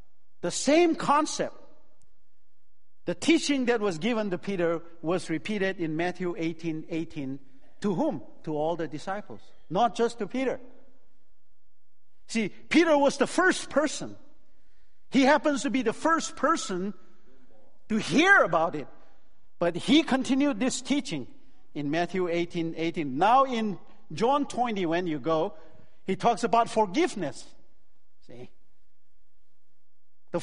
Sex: male